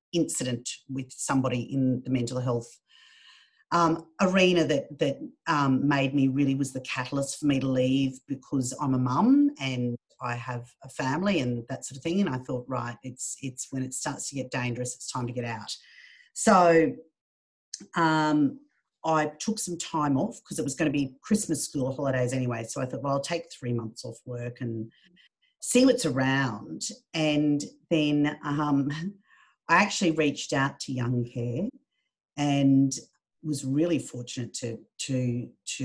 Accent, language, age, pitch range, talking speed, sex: Australian, English, 40-59, 130-165 Hz, 170 wpm, female